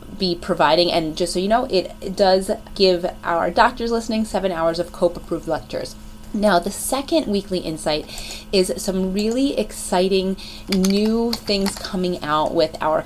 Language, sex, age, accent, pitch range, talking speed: English, female, 20-39, American, 175-225 Hz, 155 wpm